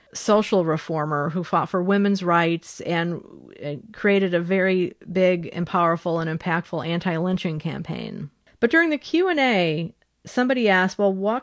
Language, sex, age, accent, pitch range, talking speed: English, female, 40-59, American, 165-200 Hz, 135 wpm